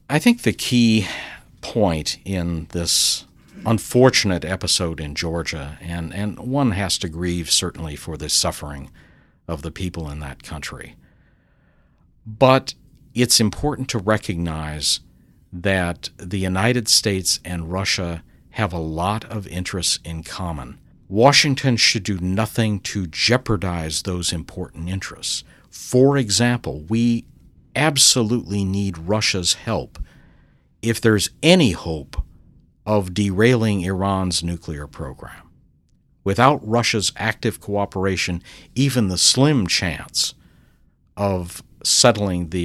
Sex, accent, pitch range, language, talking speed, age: male, American, 85-110 Hz, English, 115 wpm, 50-69